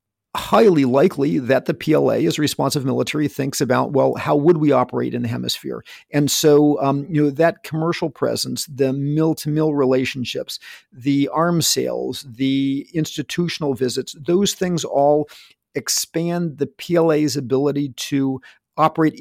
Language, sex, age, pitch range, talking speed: English, male, 50-69, 135-165 Hz, 145 wpm